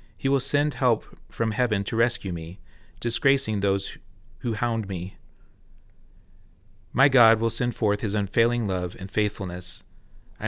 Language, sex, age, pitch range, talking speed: English, male, 30-49, 100-120 Hz, 145 wpm